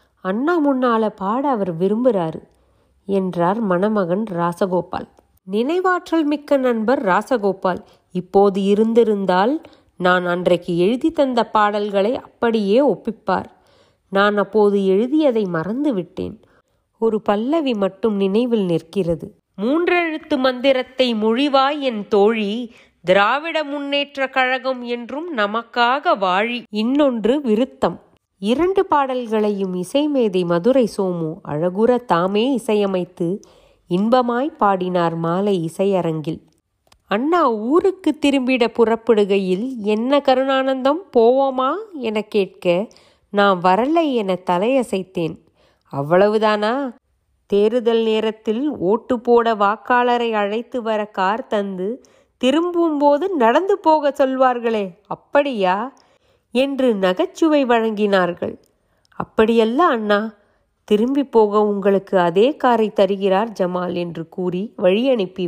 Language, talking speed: Tamil, 90 wpm